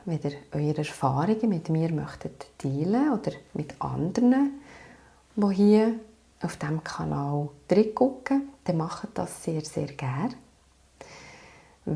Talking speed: 115 wpm